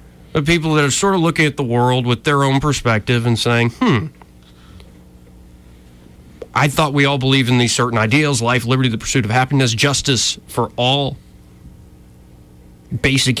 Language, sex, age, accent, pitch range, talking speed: English, male, 30-49, American, 105-140 Hz, 160 wpm